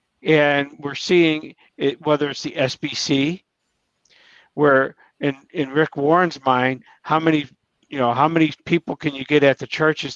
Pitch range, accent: 140-165 Hz, American